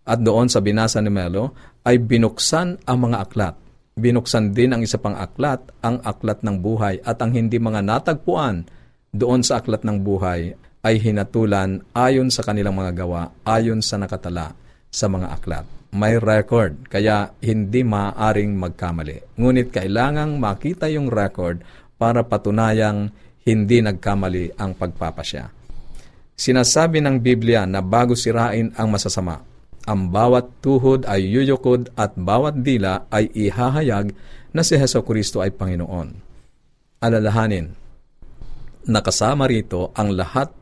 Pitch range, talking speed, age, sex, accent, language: 95-120 Hz, 135 wpm, 50-69, male, native, Filipino